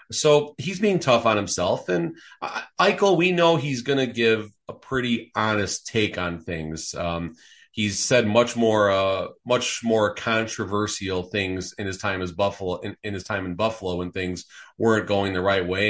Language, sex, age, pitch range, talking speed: English, male, 30-49, 95-125 Hz, 180 wpm